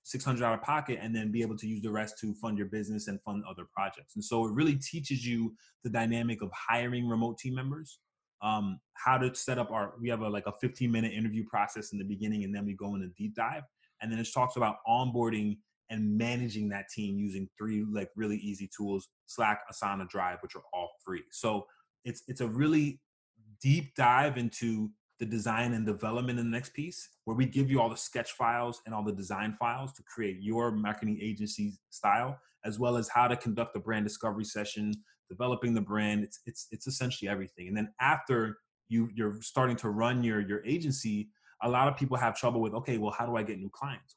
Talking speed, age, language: 220 wpm, 20-39, English